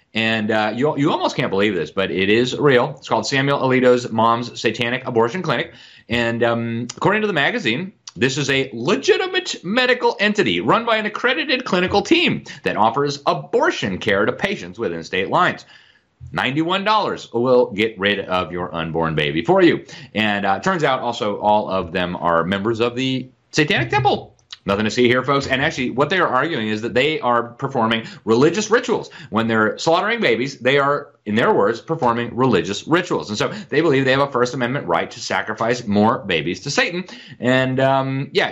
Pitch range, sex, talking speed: 110-145 Hz, male, 190 wpm